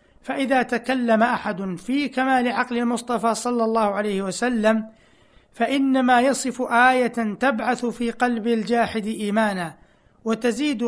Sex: male